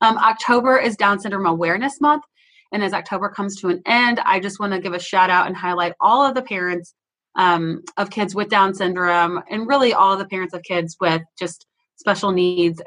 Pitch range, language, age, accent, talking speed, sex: 170-205 Hz, English, 30-49, American, 210 wpm, female